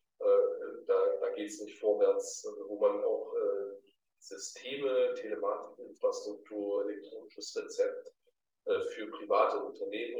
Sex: male